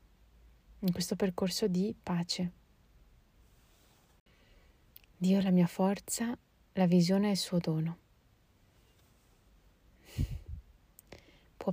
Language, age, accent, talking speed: Italian, 30-49, native, 85 wpm